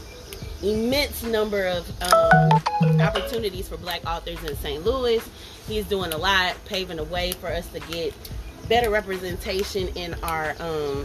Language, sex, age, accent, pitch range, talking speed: English, female, 30-49, American, 160-210 Hz, 145 wpm